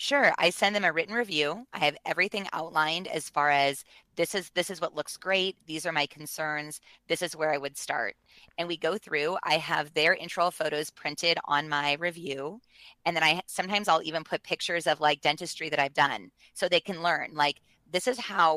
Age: 20-39